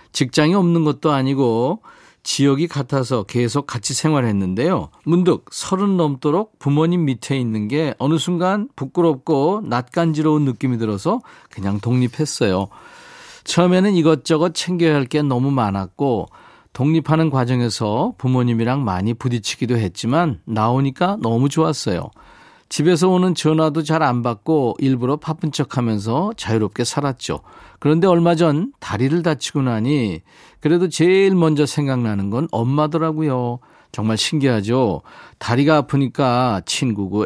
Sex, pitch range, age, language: male, 120-160 Hz, 40-59, Korean